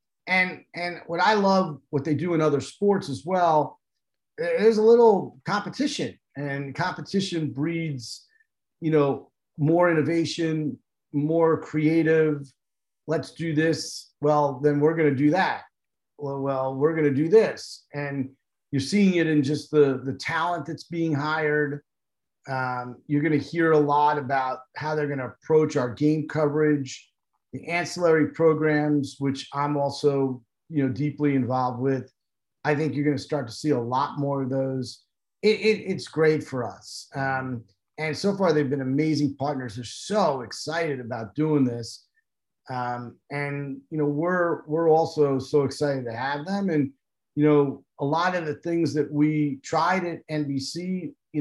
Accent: American